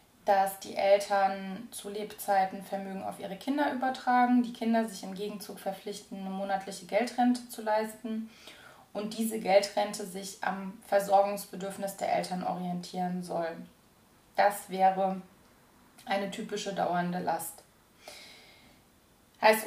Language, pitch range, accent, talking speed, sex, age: German, 190-220 Hz, German, 115 wpm, female, 20-39